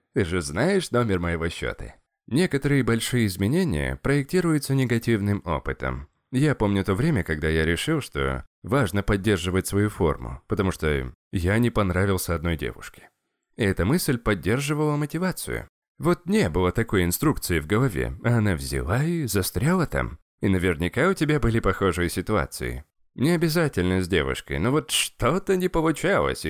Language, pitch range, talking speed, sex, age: Russian, 85-125 Hz, 145 wpm, male, 20-39